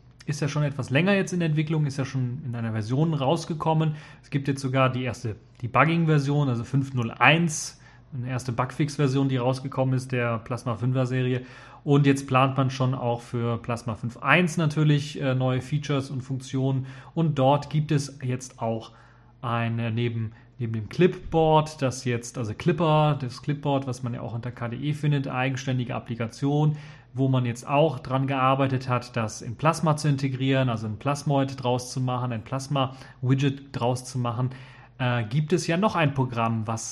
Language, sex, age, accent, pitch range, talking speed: German, male, 30-49, German, 120-140 Hz, 170 wpm